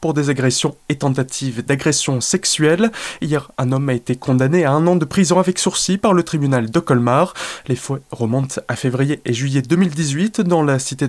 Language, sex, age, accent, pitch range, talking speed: French, male, 20-39, French, 125-170 Hz, 195 wpm